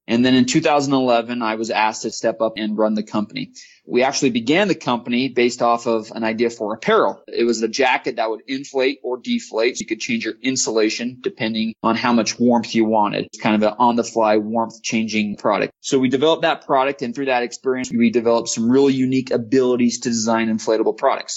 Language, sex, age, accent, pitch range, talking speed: English, male, 20-39, American, 110-125 Hz, 205 wpm